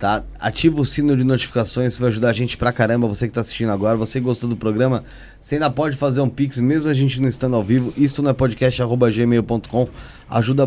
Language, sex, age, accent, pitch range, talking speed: Portuguese, male, 20-39, Brazilian, 120-140 Hz, 230 wpm